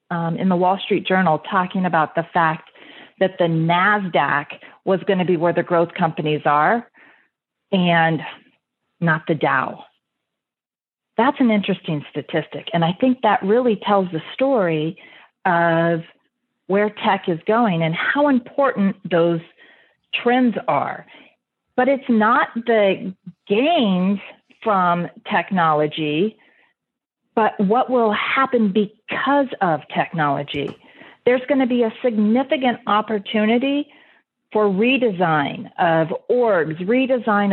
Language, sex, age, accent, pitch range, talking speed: English, female, 40-59, American, 175-245 Hz, 120 wpm